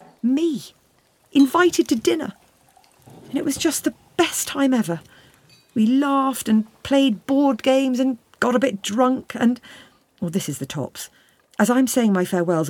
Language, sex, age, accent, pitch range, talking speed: English, female, 50-69, British, 145-230 Hz, 160 wpm